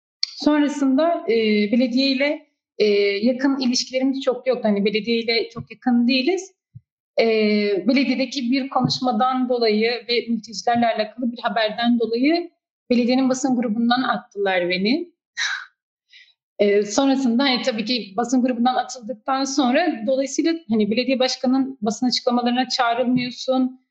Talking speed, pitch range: 120 wpm, 225-265 Hz